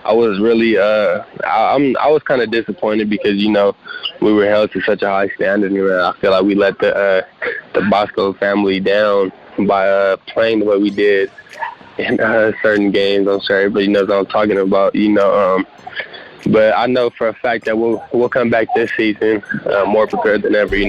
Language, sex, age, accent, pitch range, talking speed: English, male, 20-39, American, 100-115 Hz, 220 wpm